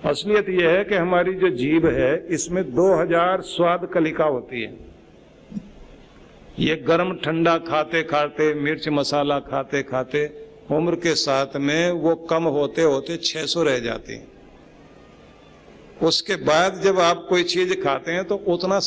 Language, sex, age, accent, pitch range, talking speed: Hindi, male, 50-69, native, 145-180 Hz, 145 wpm